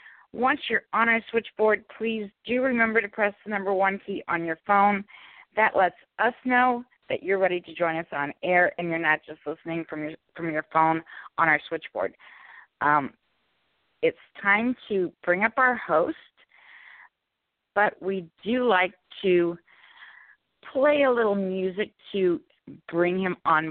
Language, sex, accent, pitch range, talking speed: English, female, American, 150-220 Hz, 160 wpm